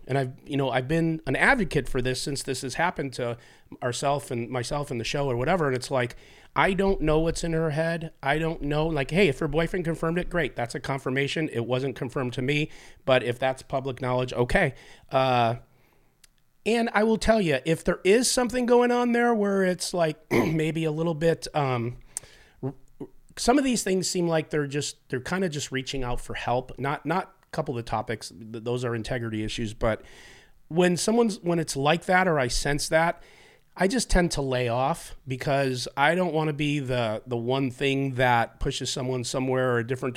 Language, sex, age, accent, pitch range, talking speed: English, male, 30-49, American, 125-165 Hz, 210 wpm